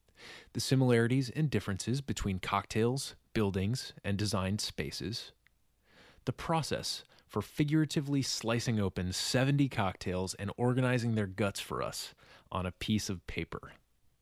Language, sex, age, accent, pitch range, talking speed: English, male, 20-39, American, 95-125 Hz, 120 wpm